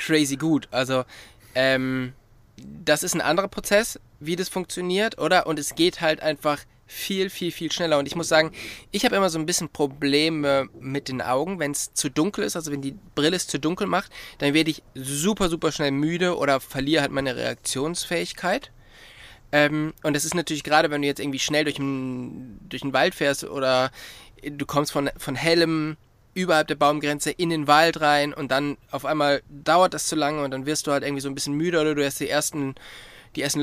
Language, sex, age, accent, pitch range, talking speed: German, male, 20-39, German, 140-165 Hz, 205 wpm